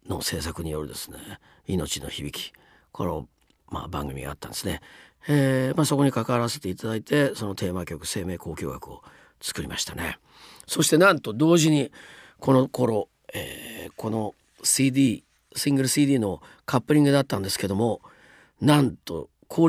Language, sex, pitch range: Japanese, male, 90-135 Hz